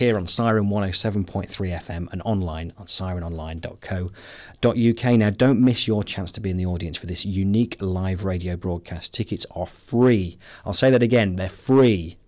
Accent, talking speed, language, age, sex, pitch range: British, 165 wpm, English, 30-49, male, 90-110 Hz